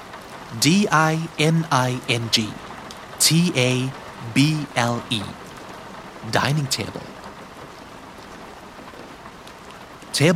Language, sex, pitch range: Thai, male, 115-150 Hz